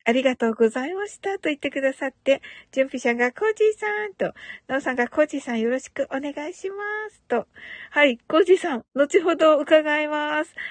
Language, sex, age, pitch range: Japanese, female, 50-69, 240-345 Hz